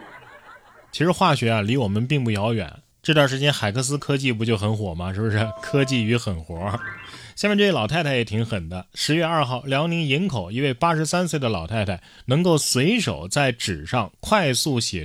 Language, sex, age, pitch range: Chinese, male, 20-39, 100-145 Hz